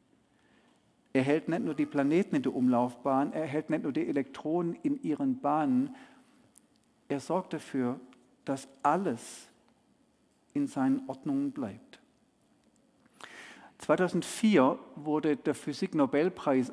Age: 50-69